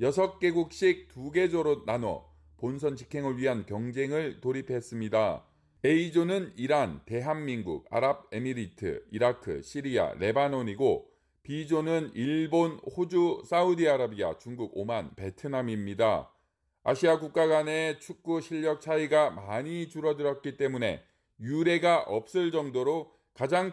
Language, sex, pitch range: Korean, male, 130-170 Hz